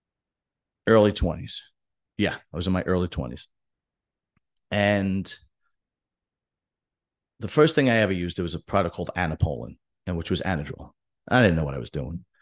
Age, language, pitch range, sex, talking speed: 40-59, English, 90-115 Hz, male, 160 wpm